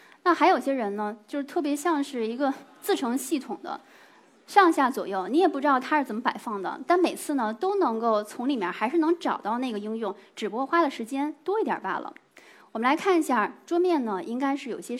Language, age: Chinese, 20-39